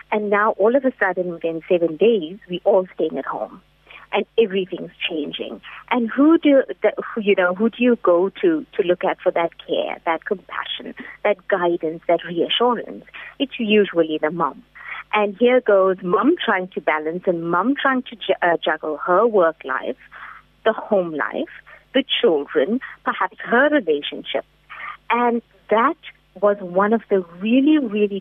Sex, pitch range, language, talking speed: female, 180-245 Hz, English, 165 wpm